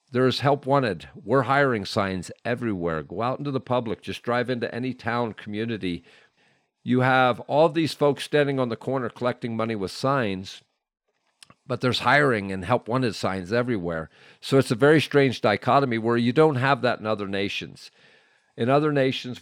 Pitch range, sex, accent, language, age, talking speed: 105-135 Hz, male, American, English, 50-69, 175 wpm